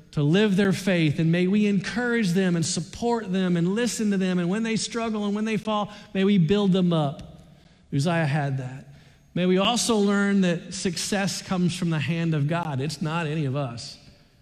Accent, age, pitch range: American, 40-59, 145-195 Hz